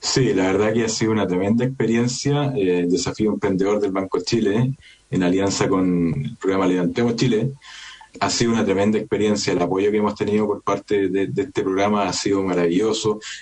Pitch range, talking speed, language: 100-120 Hz, 190 wpm, Spanish